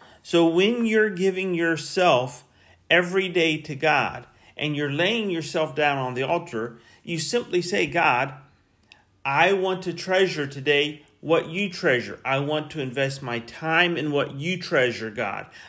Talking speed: 155 wpm